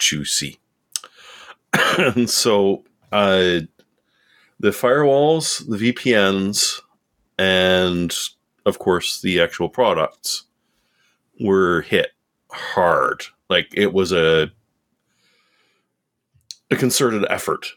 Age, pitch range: 30-49, 95-125 Hz